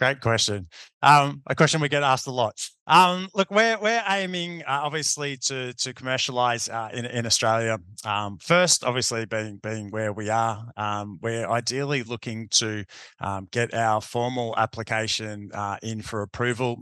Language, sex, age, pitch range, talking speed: English, male, 20-39, 110-130 Hz, 165 wpm